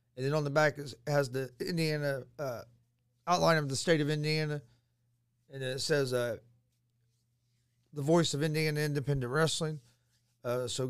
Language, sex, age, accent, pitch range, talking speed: English, male, 40-59, American, 120-150 Hz, 155 wpm